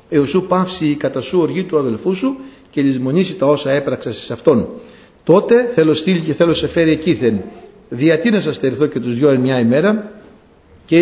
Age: 60-79